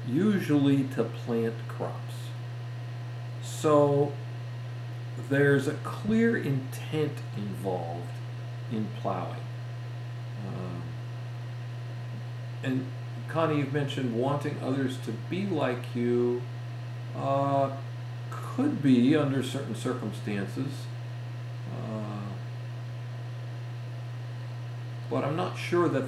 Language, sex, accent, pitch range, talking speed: English, male, American, 120-125 Hz, 80 wpm